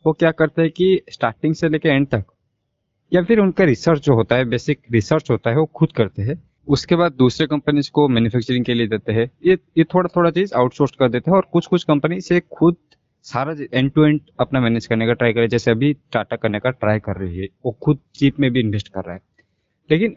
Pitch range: 115-150 Hz